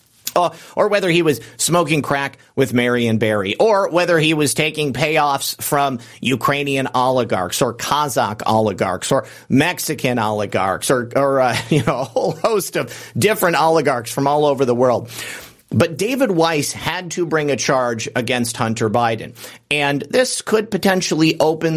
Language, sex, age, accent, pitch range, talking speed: English, male, 40-59, American, 125-155 Hz, 160 wpm